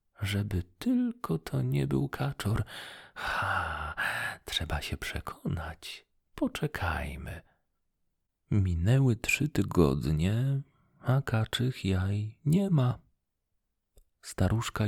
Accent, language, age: native, Polish, 40-59